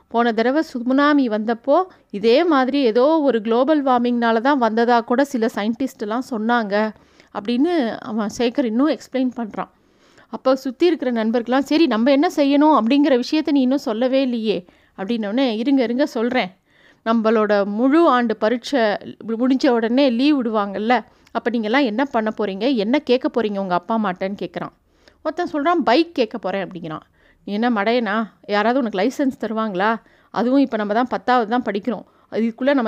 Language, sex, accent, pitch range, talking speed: Tamil, female, native, 220-275 Hz, 140 wpm